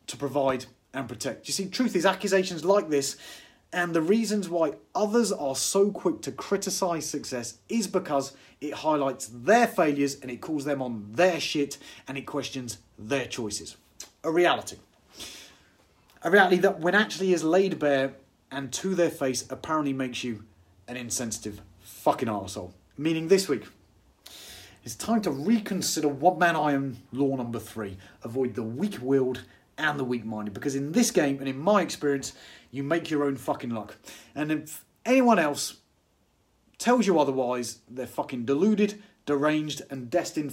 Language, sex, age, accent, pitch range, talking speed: English, male, 30-49, British, 125-180 Hz, 160 wpm